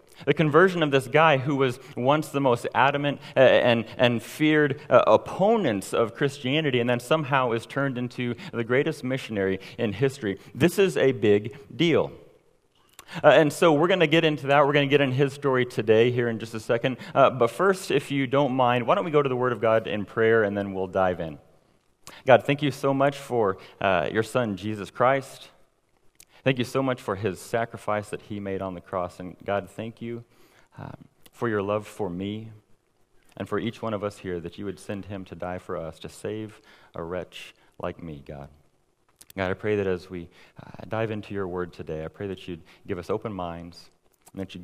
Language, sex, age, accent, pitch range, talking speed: English, male, 30-49, American, 95-135 Hz, 215 wpm